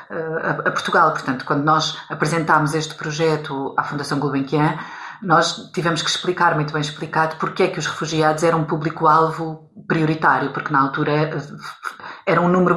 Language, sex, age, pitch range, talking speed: Portuguese, female, 40-59, 145-170 Hz, 155 wpm